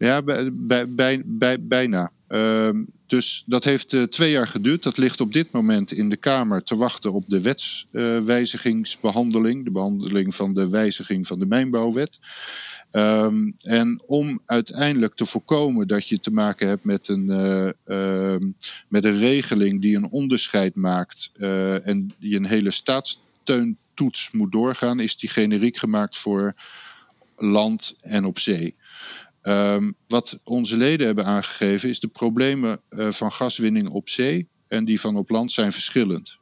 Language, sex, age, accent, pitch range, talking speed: Dutch, male, 50-69, Dutch, 100-125 Hz, 140 wpm